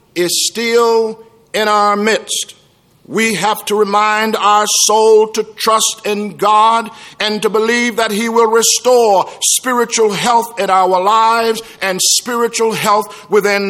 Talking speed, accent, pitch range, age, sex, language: 135 wpm, American, 205-230 Hz, 50-69, male, English